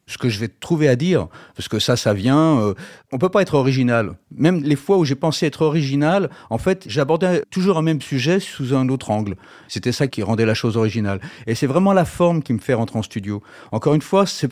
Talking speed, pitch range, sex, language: 250 wpm, 110-160 Hz, male, French